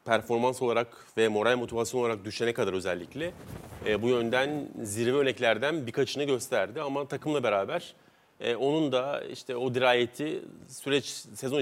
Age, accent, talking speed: 40-59, native, 140 wpm